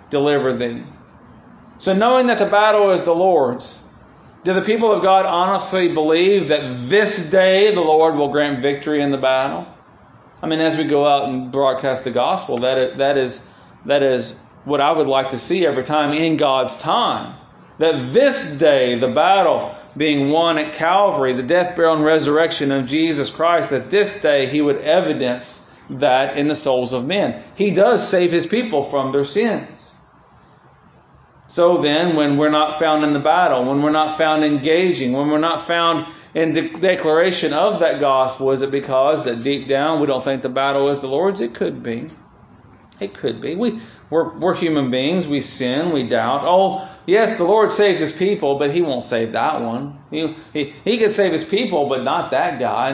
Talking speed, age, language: 190 wpm, 40-59, English